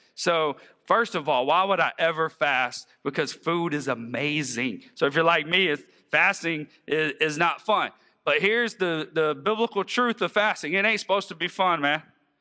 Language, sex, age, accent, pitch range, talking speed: English, male, 40-59, American, 195-260 Hz, 185 wpm